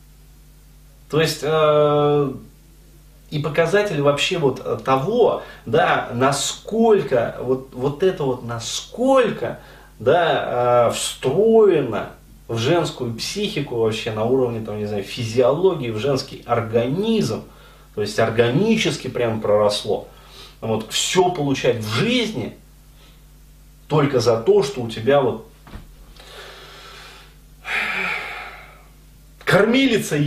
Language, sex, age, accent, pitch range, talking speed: Russian, male, 30-49, native, 125-195 Hz, 95 wpm